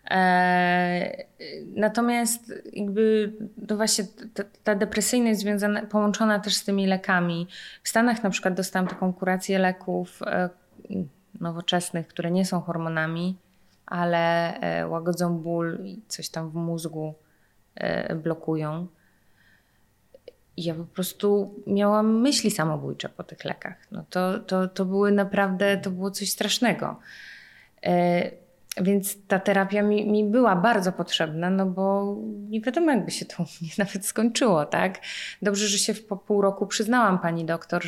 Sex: female